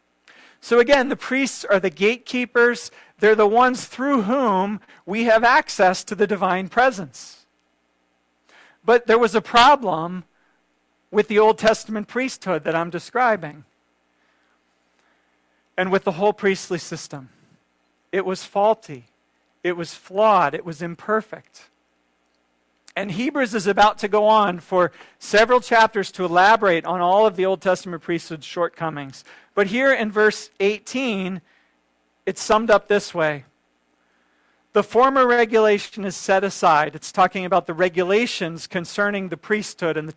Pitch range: 135-215 Hz